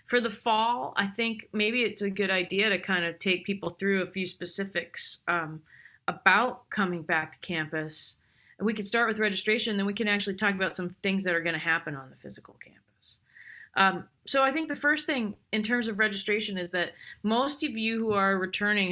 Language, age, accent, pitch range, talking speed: English, 30-49, American, 170-210 Hz, 205 wpm